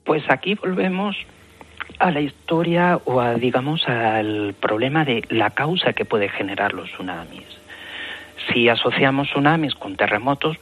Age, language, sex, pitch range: 40-59, Spanish, male, 100-130 Hz